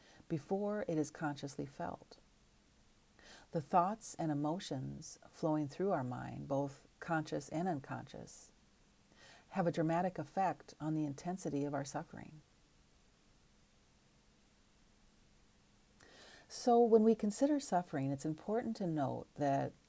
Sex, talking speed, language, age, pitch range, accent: female, 110 wpm, English, 40-59, 140-170 Hz, American